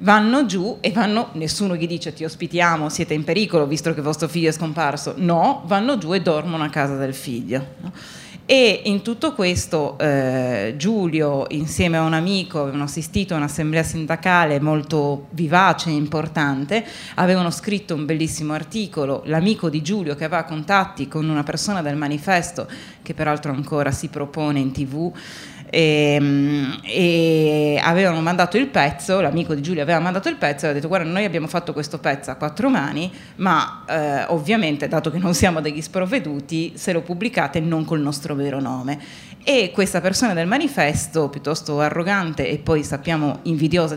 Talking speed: 165 wpm